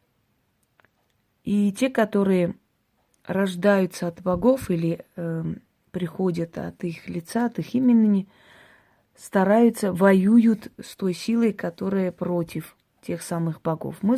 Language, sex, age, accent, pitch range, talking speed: Russian, female, 30-49, native, 170-205 Hz, 110 wpm